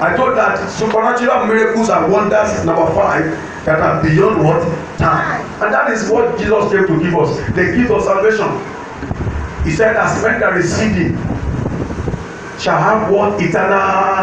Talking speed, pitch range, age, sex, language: 150 wpm, 185-220 Hz, 40-59, male, English